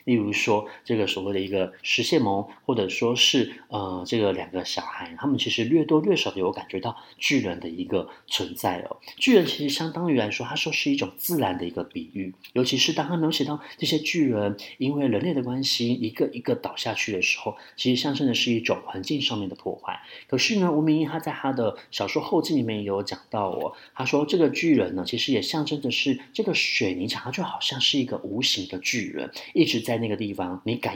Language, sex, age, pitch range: Chinese, male, 30-49, 105-155 Hz